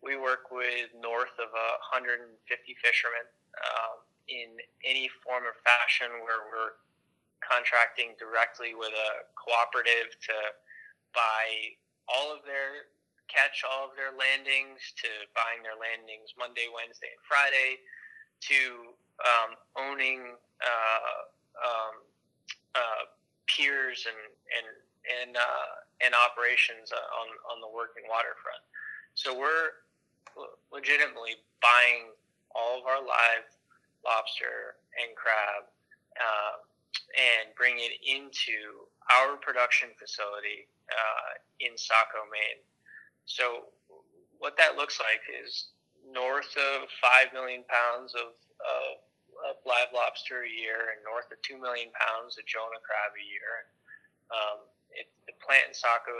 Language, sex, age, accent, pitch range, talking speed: English, male, 20-39, American, 115-130 Hz, 125 wpm